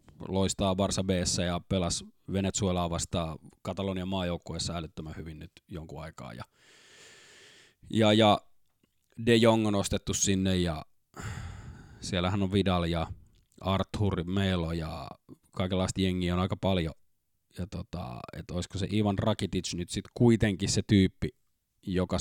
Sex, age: male, 20-39